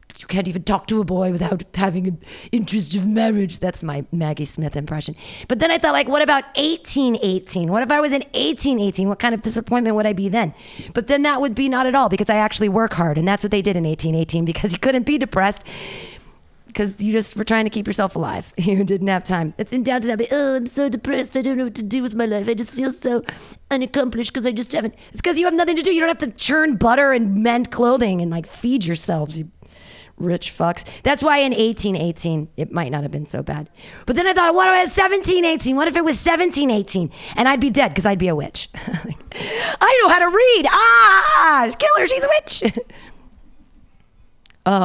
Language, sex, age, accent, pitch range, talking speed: English, female, 30-49, American, 185-270 Hz, 235 wpm